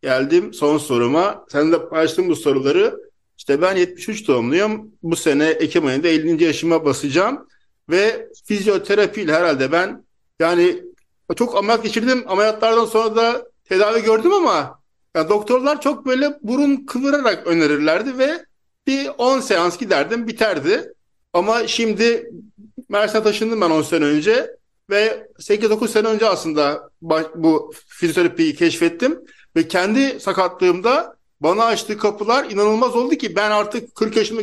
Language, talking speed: Turkish, 130 wpm